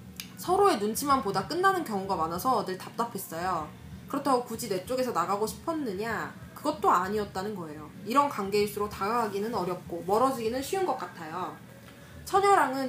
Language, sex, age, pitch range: Korean, female, 20-39, 195-300 Hz